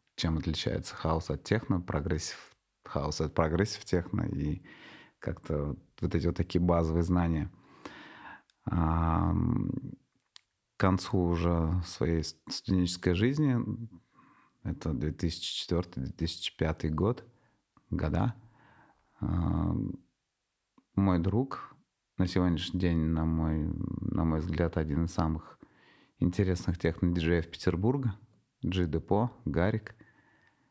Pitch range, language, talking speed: 80-100 Hz, Russian, 90 wpm